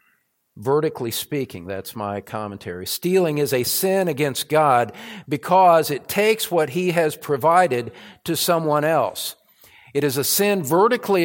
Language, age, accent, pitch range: English, 50-69, American, 135-175 Hz